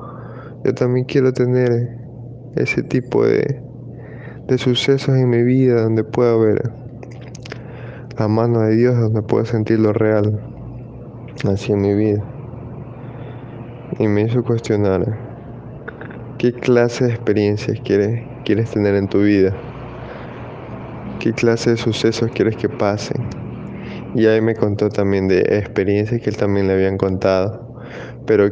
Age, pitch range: 20-39, 105-125 Hz